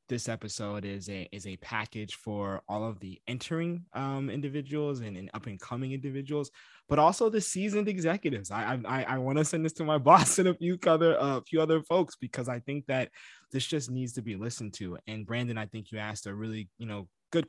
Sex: male